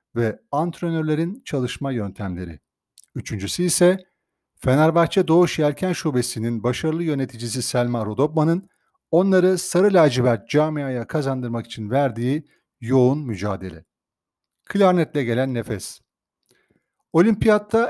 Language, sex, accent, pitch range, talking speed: Turkish, male, native, 120-170 Hz, 90 wpm